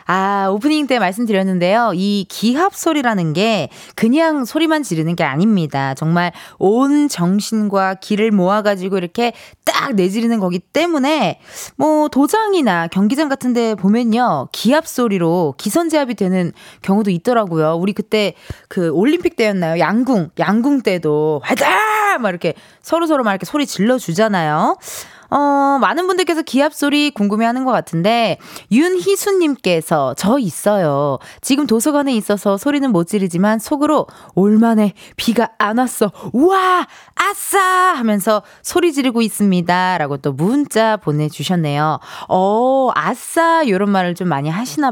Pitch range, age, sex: 185-285 Hz, 20-39, female